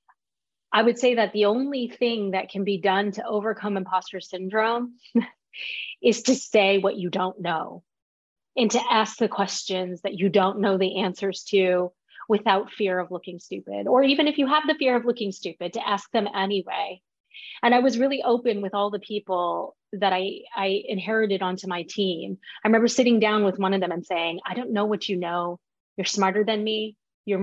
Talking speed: 195 wpm